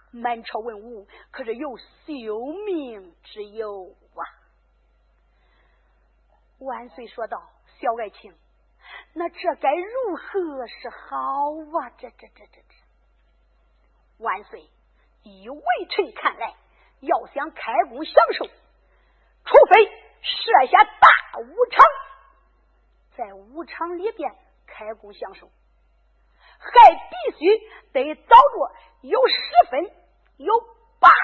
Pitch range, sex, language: 260-385 Hz, female, Chinese